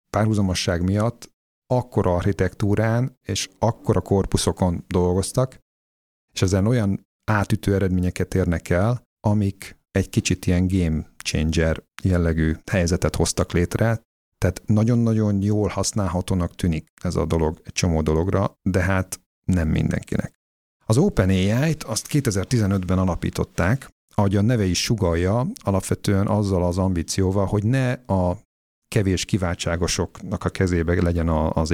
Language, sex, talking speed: Hungarian, male, 120 wpm